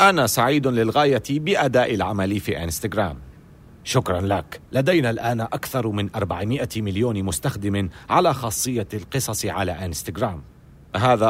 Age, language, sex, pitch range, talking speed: 40-59, Arabic, male, 95-135 Hz, 115 wpm